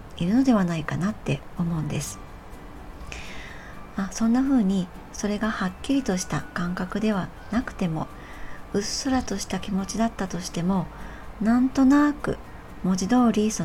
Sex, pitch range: male, 180-230 Hz